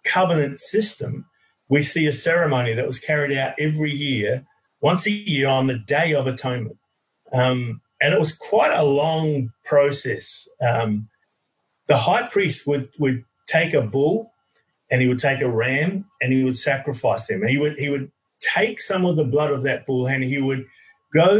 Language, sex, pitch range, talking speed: English, male, 125-155 Hz, 180 wpm